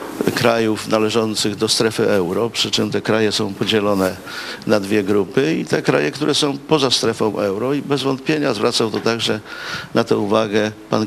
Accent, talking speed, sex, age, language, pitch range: native, 175 wpm, male, 50-69, Polish, 105-125 Hz